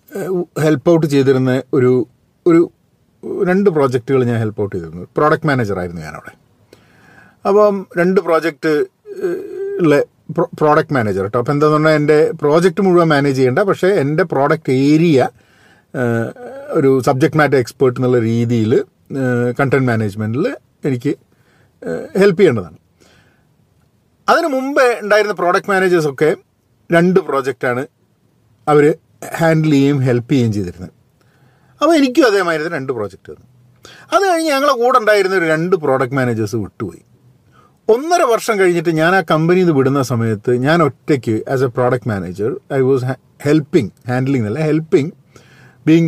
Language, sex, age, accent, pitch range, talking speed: Malayalam, male, 40-59, native, 130-185 Hz, 125 wpm